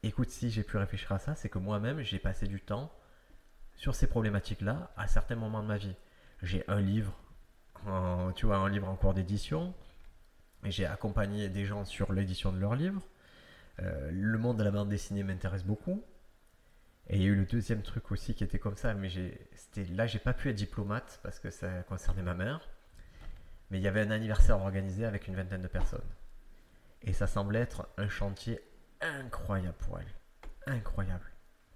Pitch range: 95-110 Hz